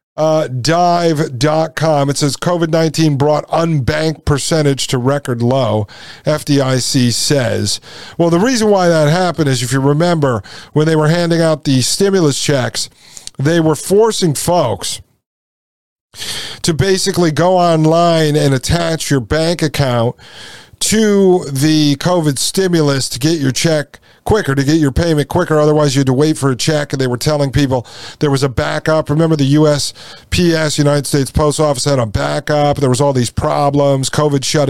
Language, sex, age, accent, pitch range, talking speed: English, male, 50-69, American, 135-165 Hz, 160 wpm